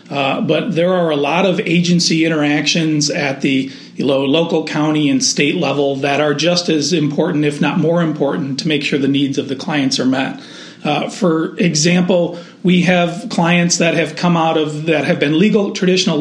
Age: 40-59